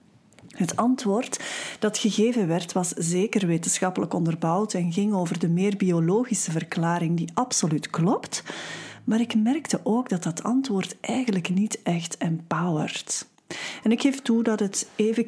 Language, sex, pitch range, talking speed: Dutch, female, 180-235 Hz, 145 wpm